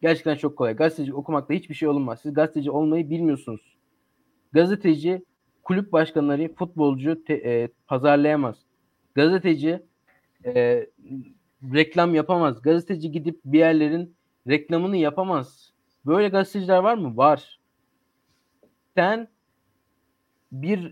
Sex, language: male, Turkish